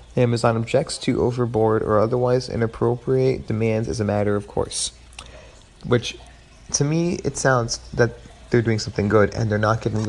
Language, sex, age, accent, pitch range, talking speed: English, male, 30-49, American, 100-120 Hz, 160 wpm